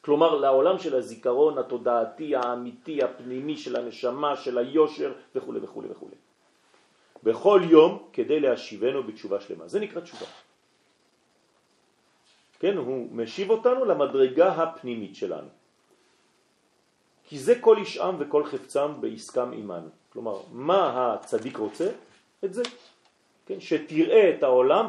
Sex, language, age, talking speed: male, French, 40-59, 115 wpm